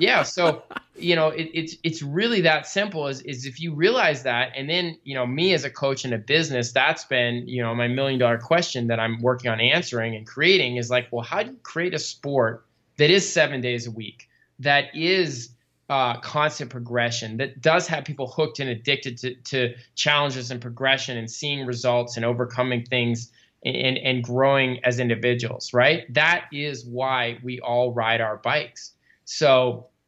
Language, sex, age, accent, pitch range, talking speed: English, male, 20-39, American, 120-155 Hz, 190 wpm